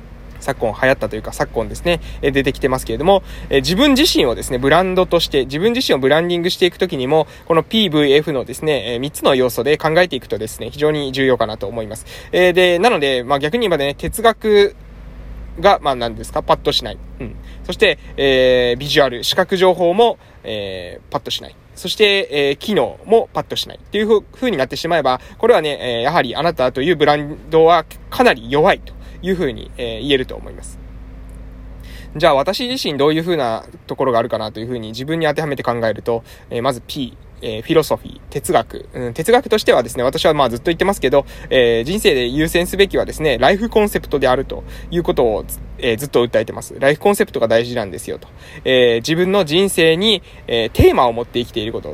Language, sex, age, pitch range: Japanese, male, 20-39, 125-200 Hz